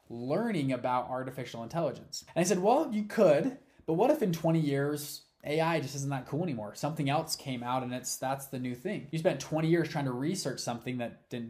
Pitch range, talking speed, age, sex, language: 135-180 Hz, 220 wpm, 20-39, male, English